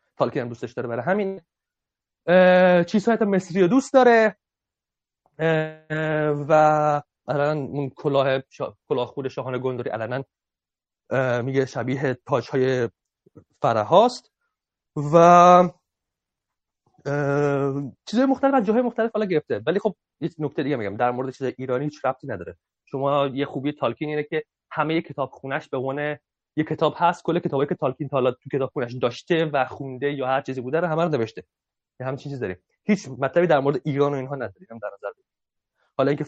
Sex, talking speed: male, 160 wpm